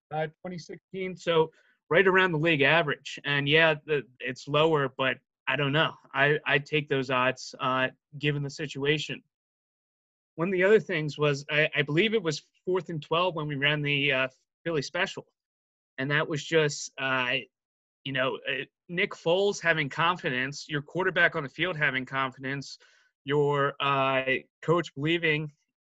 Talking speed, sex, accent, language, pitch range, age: 160 wpm, male, American, English, 140-170 Hz, 20-39